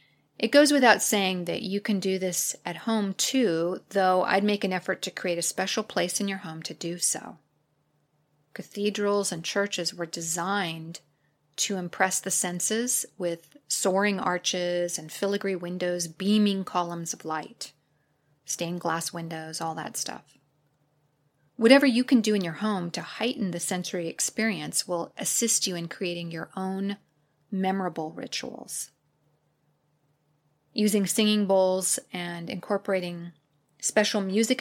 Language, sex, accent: English, female, American